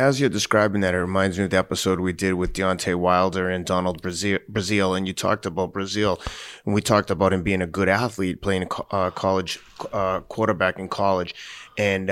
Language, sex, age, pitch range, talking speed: English, male, 30-49, 90-105 Hz, 200 wpm